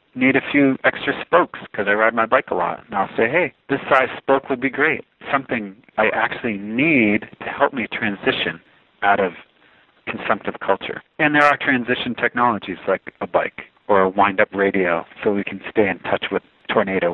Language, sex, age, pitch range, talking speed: English, male, 40-59, 105-130 Hz, 190 wpm